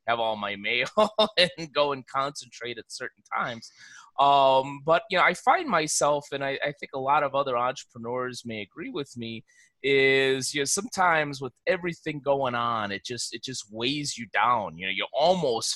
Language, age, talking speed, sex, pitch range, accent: English, 30-49, 190 wpm, male, 125-170 Hz, American